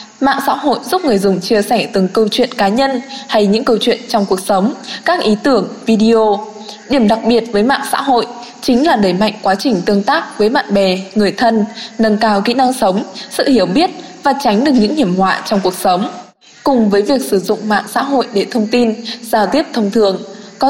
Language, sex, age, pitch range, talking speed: Vietnamese, female, 10-29, 210-270 Hz, 225 wpm